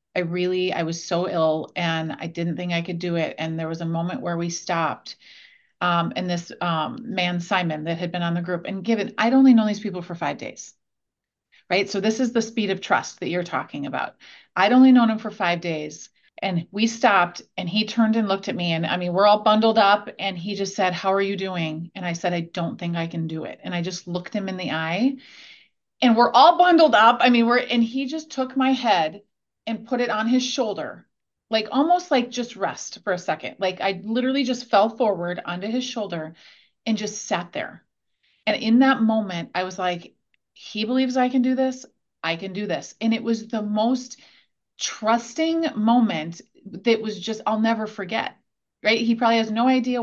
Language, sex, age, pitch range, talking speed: English, female, 30-49, 175-235 Hz, 220 wpm